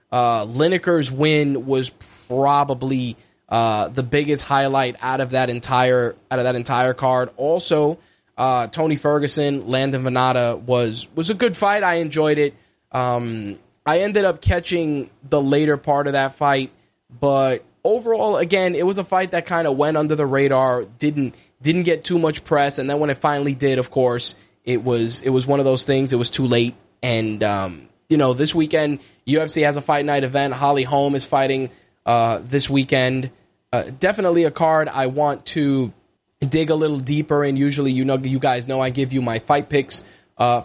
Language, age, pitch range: English, 10-29, 120-145 Hz